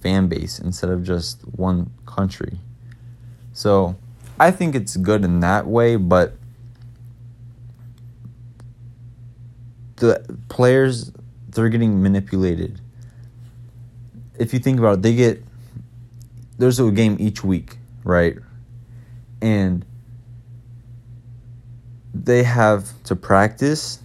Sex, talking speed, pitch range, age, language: male, 95 wpm, 95-120 Hz, 20-39, English